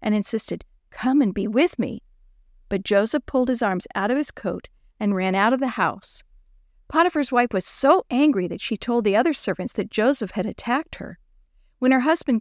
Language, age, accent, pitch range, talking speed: English, 50-69, American, 200-270 Hz, 200 wpm